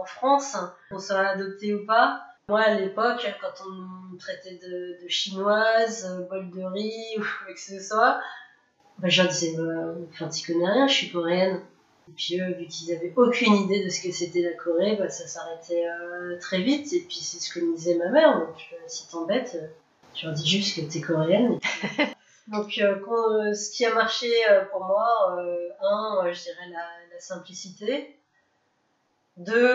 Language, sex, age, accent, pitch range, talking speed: French, female, 30-49, French, 175-215 Hz, 190 wpm